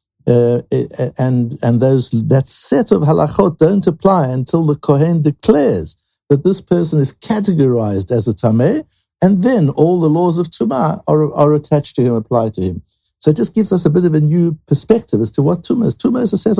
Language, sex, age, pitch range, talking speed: English, male, 60-79, 115-155 Hz, 205 wpm